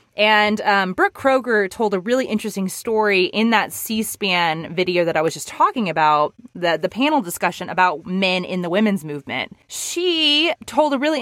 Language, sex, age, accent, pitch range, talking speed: English, female, 20-39, American, 180-245 Hz, 175 wpm